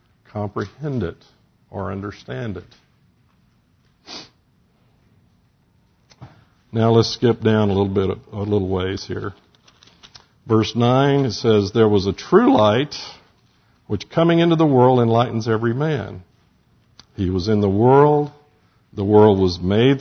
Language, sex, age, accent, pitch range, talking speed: English, male, 60-79, American, 100-125 Hz, 125 wpm